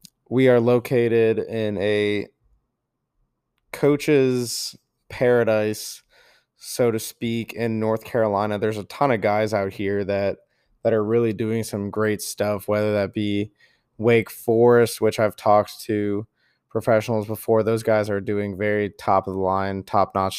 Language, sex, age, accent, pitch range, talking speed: English, male, 20-39, American, 100-115 Hz, 135 wpm